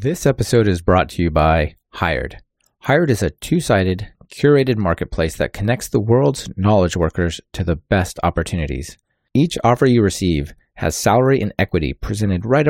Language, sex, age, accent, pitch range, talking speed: English, male, 30-49, American, 90-120 Hz, 160 wpm